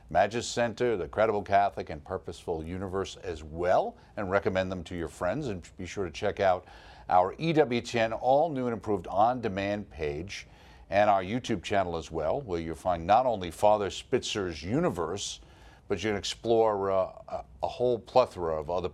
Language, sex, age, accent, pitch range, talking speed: English, male, 50-69, American, 85-110 Hz, 170 wpm